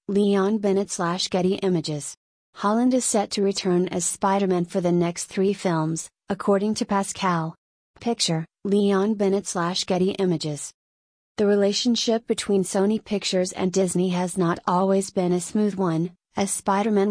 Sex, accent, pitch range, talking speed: female, American, 180-200 Hz, 155 wpm